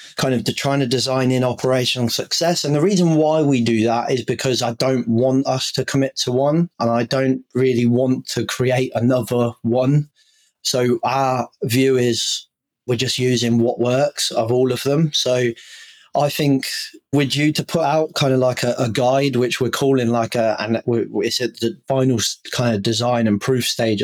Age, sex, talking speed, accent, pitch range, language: 20-39, male, 195 wpm, British, 115-135 Hz, English